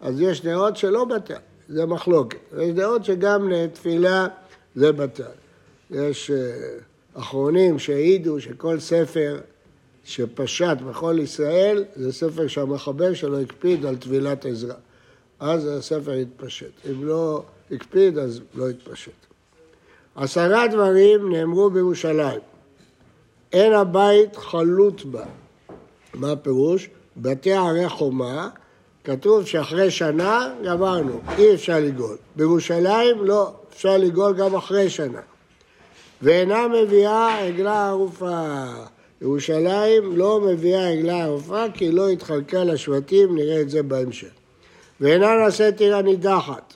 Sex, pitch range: male, 145-195 Hz